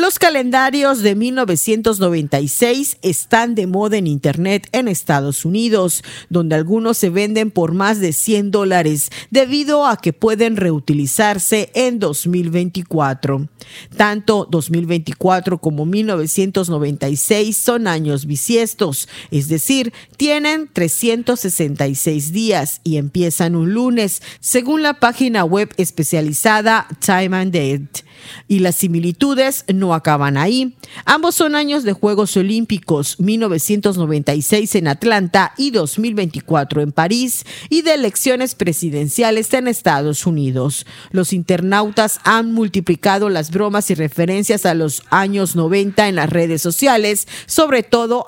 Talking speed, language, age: 120 wpm, Spanish, 40-59